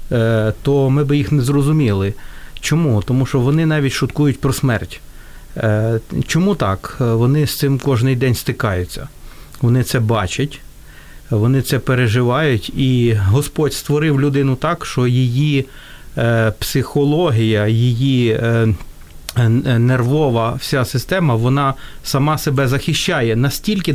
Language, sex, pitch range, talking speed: Ukrainian, male, 115-145 Hz, 115 wpm